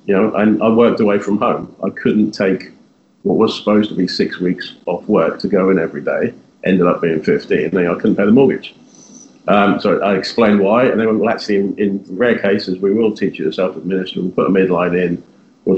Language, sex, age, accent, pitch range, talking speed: English, male, 40-59, British, 95-110 Hz, 235 wpm